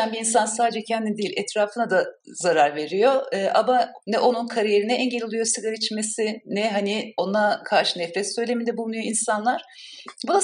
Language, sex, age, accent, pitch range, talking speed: Turkish, female, 50-69, native, 180-245 Hz, 165 wpm